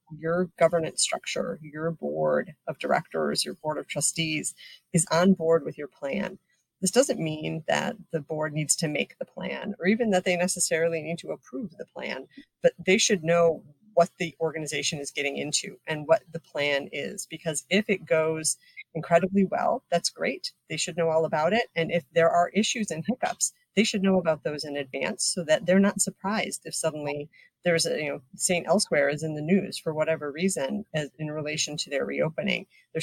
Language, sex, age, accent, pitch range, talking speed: English, female, 40-59, American, 150-190 Hz, 195 wpm